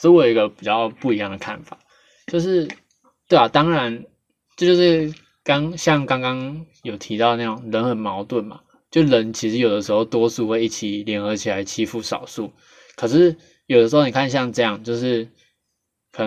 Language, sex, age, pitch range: Chinese, male, 20-39, 110-145 Hz